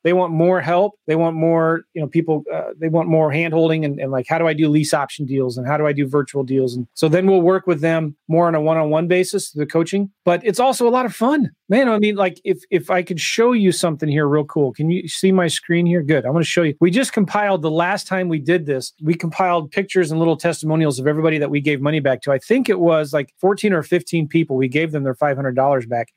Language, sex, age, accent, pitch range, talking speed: English, male, 30-49, American, 145-175 Hz, 270 wpm